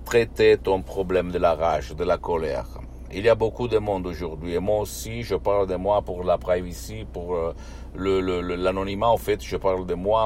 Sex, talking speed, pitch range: male, 215 wpm, 80-105 Hz